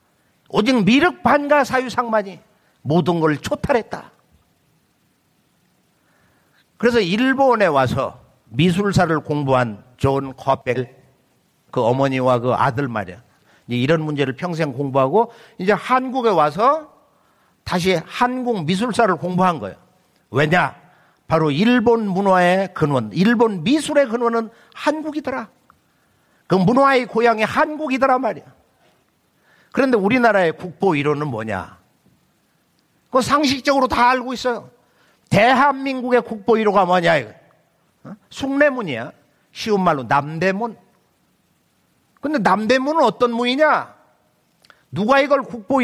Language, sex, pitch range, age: Korean, male, 150-245 Hz, 50-69